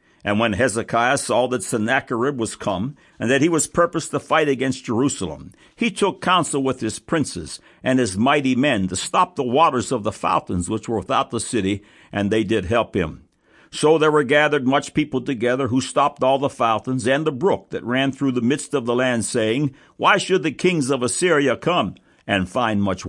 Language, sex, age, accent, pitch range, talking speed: English, male, 60-79, American, 110-155 Hz, 205 wpm